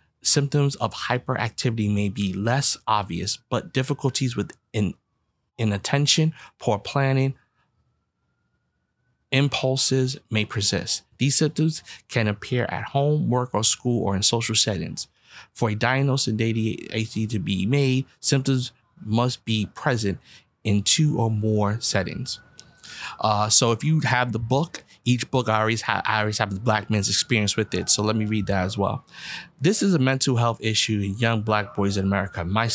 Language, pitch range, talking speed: English, 105-125 Hz, 155 wpm